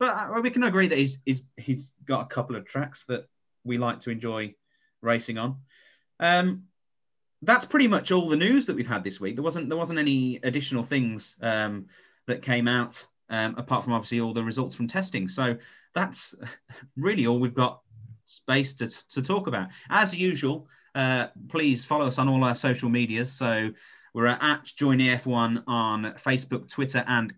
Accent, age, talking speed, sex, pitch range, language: British, 30-49, 180 wpm, male, 115-140 Hz, English